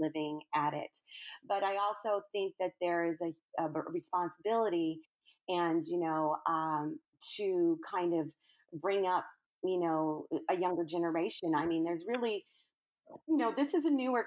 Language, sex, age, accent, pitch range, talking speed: English, female, 30-49, American, 170-225 Hz, 155 wpm